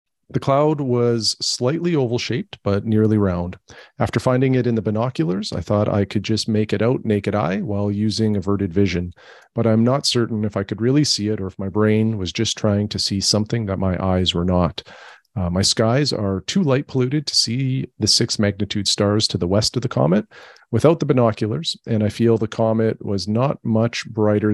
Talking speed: 210 wpm